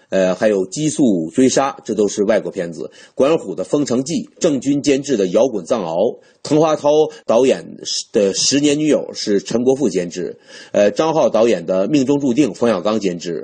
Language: Chinese